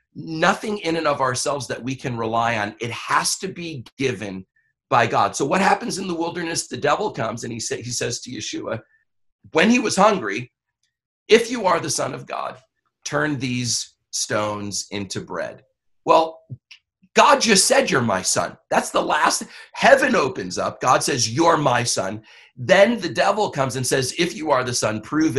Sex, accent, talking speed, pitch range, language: male, American, 180 wpm, 120-195 Hz, English